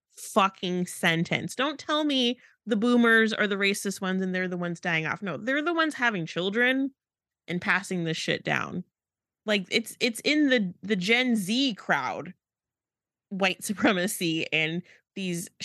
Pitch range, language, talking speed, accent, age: 180-240 Hz, English, 155 wpm, American, 20-39